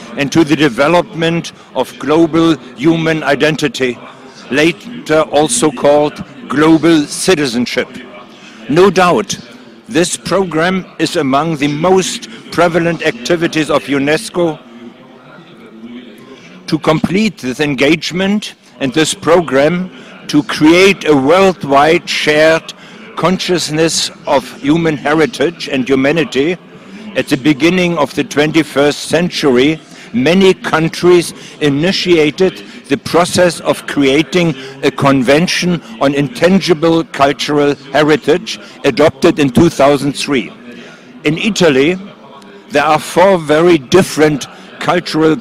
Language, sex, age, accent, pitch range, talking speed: Italian, male, 60-79, German, 145-175 Hz, 100 wpm